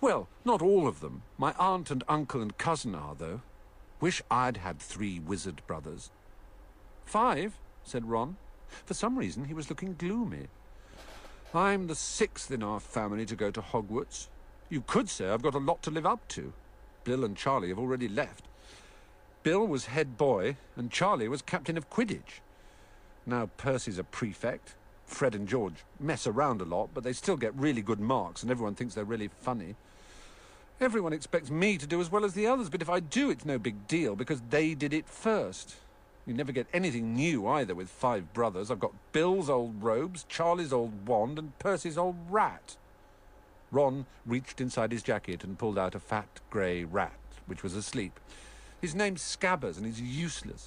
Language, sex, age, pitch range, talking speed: Vietnamese, male, 50-69, 105-165 Hz, 185 wpm